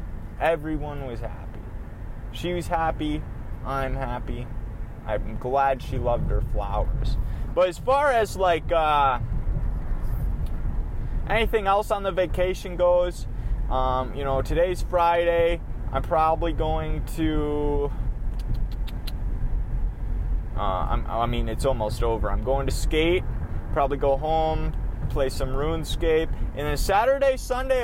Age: 20-39